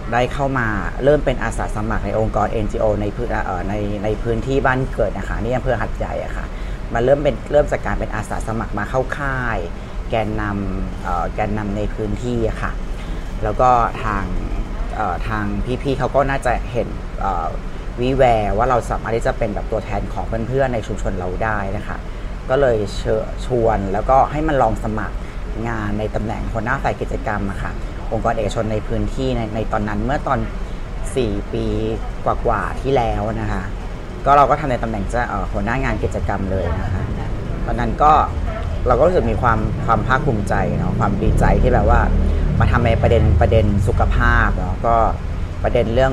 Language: Thai